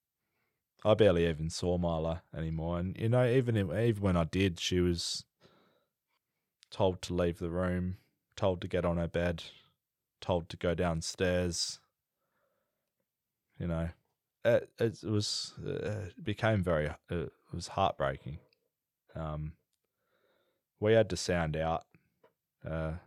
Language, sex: English, male